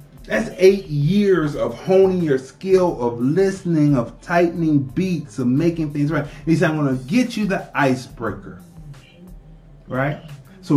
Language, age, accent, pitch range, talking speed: English, 30-49, American, 125-170 Hz, 150 wpm